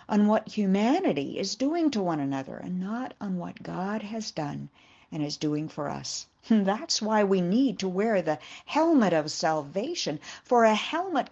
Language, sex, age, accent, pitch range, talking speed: English, female, 60-79, American, 180-265 Hz, 175 wpm